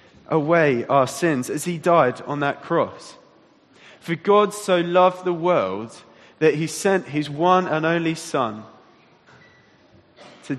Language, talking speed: English, 135 wpm